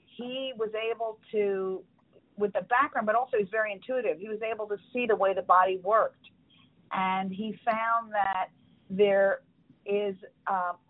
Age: 50-69